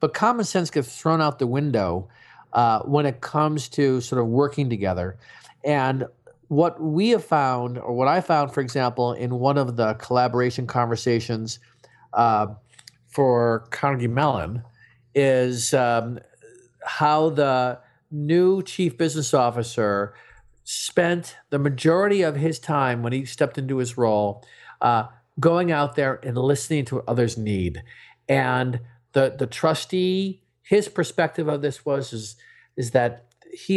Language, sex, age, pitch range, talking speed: English, male, 50-69, 125-165 Hz, 145 wpm